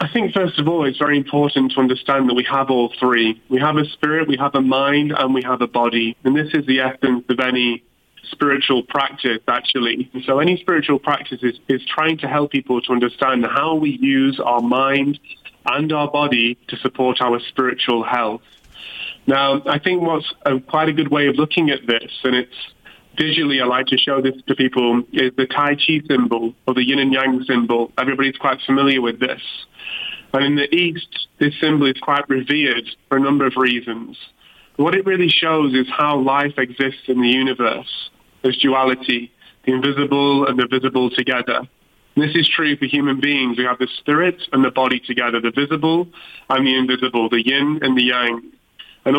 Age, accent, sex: 30-49, British, male